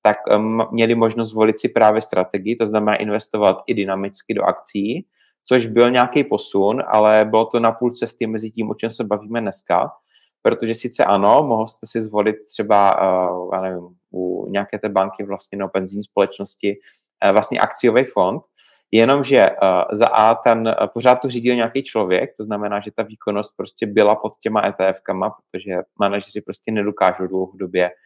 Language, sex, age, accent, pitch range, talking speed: Czech, male, 30-49, native, 105-115 Hz, 160 wpm